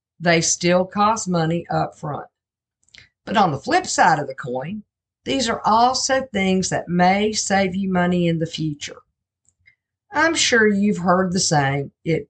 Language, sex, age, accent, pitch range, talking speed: English, female, 50-69, American, 160-215 Hz, 160 wpm